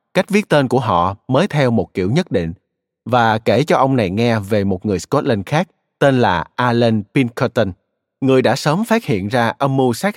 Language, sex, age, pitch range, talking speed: Vietnamese, male, 20-39, 105-140 Hz, 205 wpm